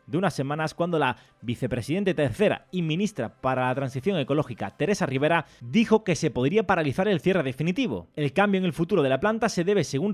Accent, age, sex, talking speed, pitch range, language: Spanish, 30-49, male, 200 wpm, 140-195 Hz, Spanish